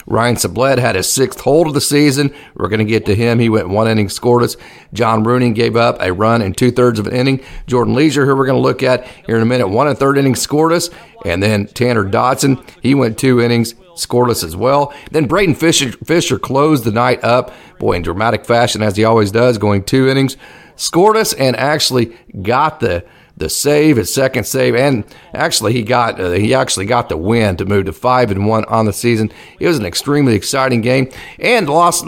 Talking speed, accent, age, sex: 220 wpm, American, 40-59, male